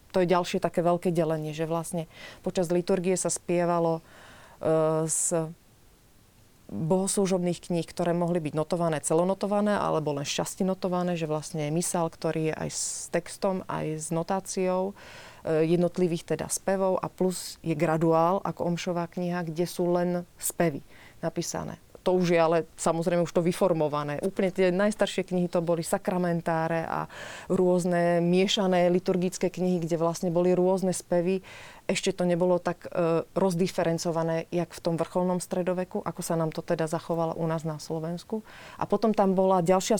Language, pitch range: Slovak, 165-185 Hz